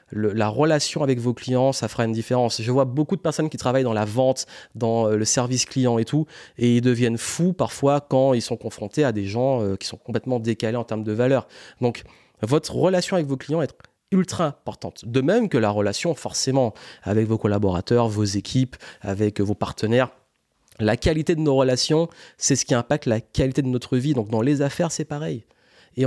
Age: 30-49